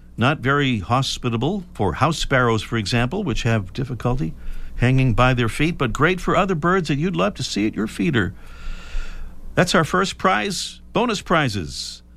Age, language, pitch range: 50-69, English, 90-140 Hz